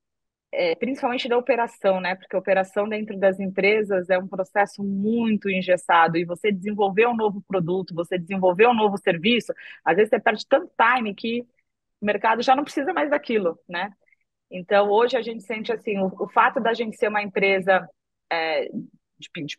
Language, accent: Portuguese, Brazilian